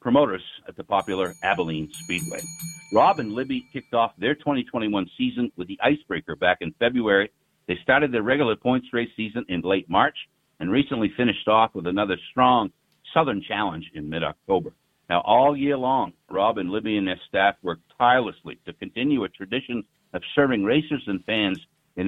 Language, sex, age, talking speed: English, male, 60-79, 170 wpm